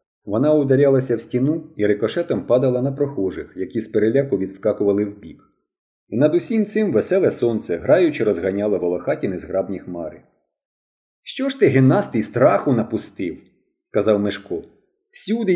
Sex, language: male, Ukrainian